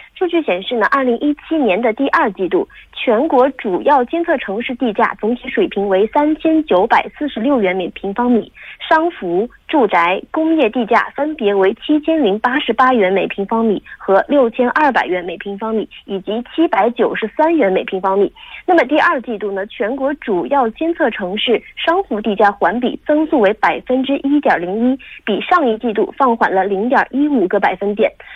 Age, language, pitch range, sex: 20-39, Korean, 215-310 Hz, female